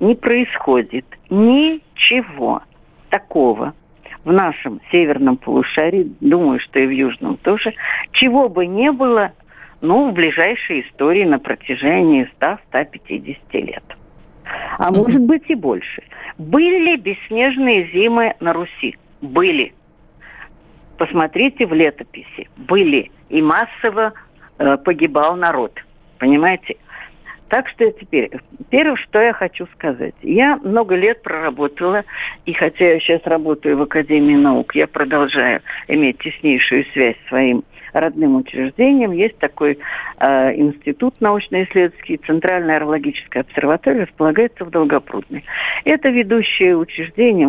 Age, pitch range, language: 50-69, 160-270 Hz, Russian